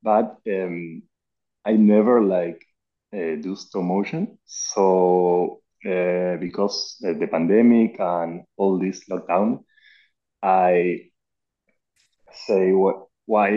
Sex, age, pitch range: male, 30-49, 85-100 Hz